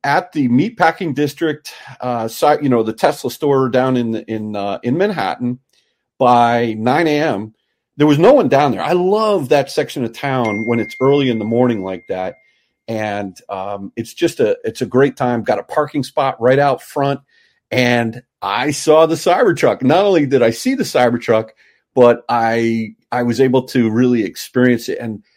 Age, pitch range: 40-59, 120-170 Hz